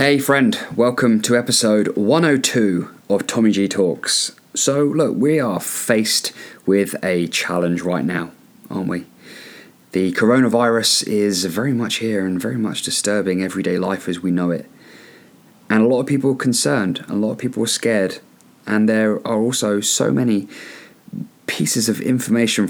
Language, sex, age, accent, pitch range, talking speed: English, male, 20-39, British, 95-120 Hz, 160 wpm